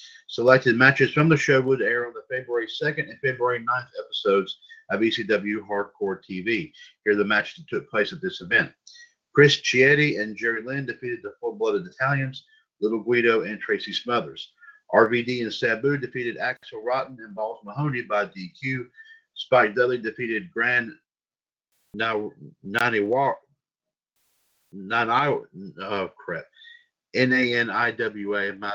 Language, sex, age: English, male, 50-69